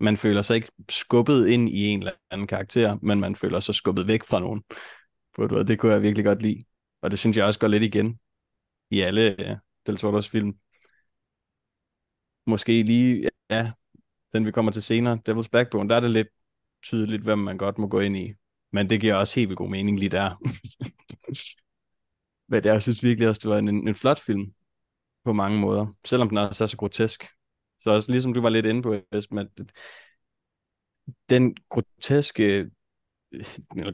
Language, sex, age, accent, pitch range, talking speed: Danish, male, 20-39, native, 100-115 Hz, 180 wpm